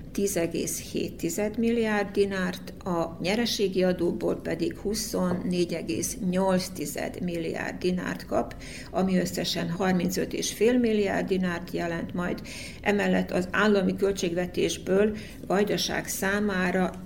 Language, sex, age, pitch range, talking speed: Hungarian, female, 60-79, 175-205 Hz, 85 wpm